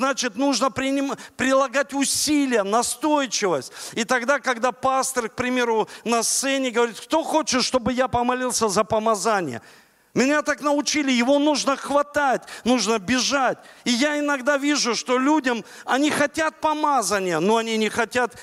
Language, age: Russian, 40-59